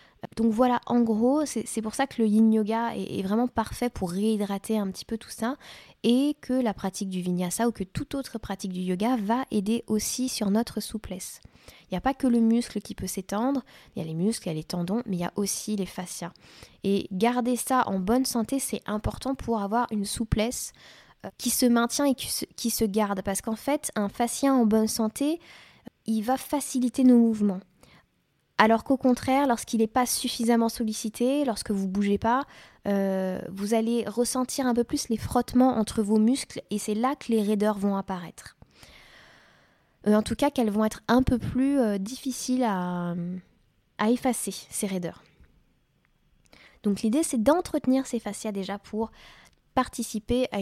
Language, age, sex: French, 20-39, female